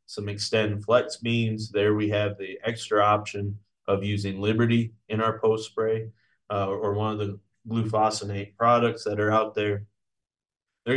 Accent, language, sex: American, English, male